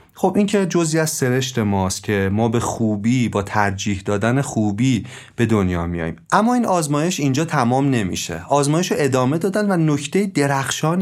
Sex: male